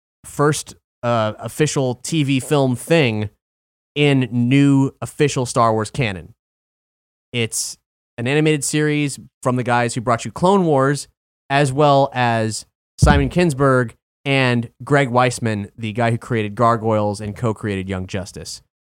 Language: English